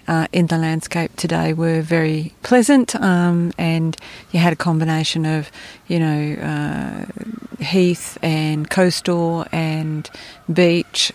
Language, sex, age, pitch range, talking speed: English, female, 40-59, 165-195 Hz, 125 wpm